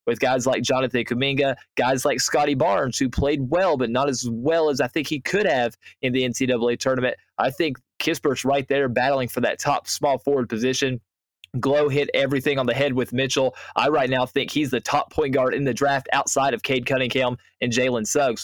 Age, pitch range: 20-39, 125-140 Hz